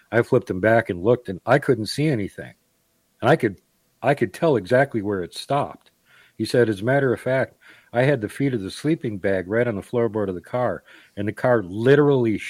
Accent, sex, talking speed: American, male, 225 wpm